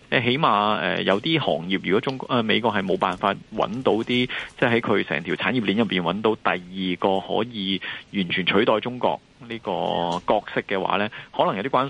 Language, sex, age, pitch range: Chinese, male, 20-39, 90-115 Hz